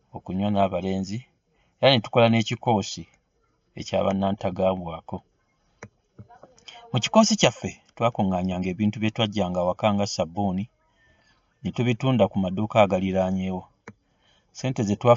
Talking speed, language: 110 wpm, English